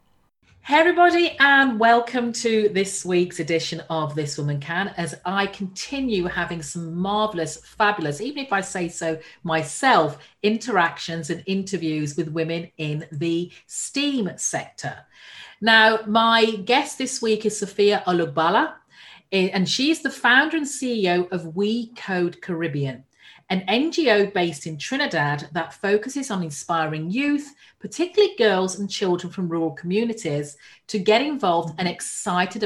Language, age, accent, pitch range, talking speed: English, 40-59, British, 165-230 Hz, 135 wpm